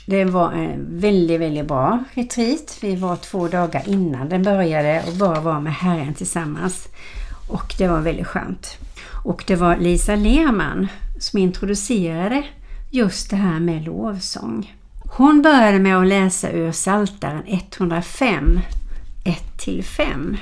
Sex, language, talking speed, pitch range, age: female, Swedish, 130 wpm, 170-235 Hz, 60-79